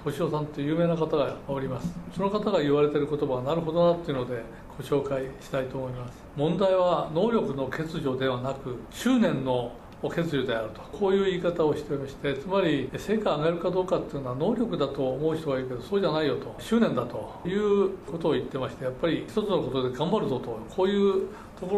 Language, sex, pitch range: Japanese, male, 130-185 Hz